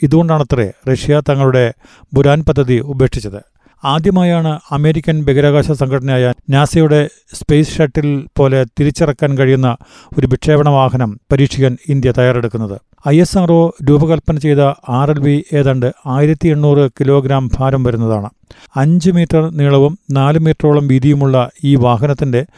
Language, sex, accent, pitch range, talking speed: Malayalam, male, native, 130-150 Hz, 105 wpm